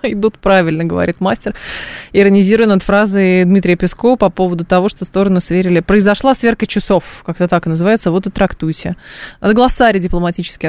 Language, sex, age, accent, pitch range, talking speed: Russian, female, 20-39, native, 175-210 Hz, 155 wpm